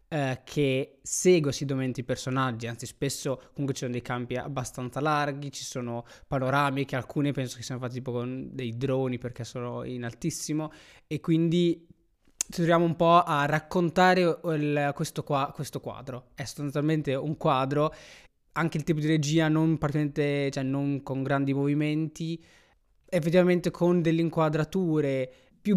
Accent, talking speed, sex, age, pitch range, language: native, 155 wpm, male, 20-39, 135-165 Hz, Italian